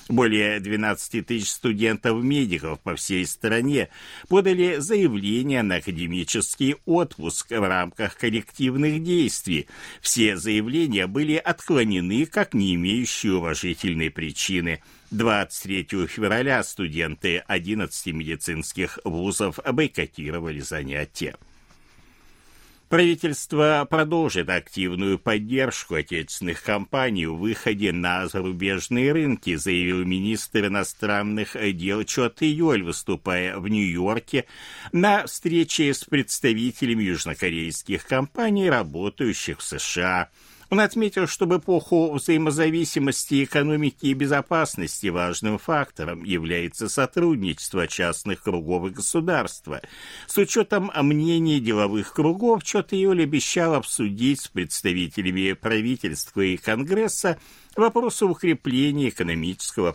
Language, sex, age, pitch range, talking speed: Russian, male, 60-79, 95-155 Hz, 95 wpm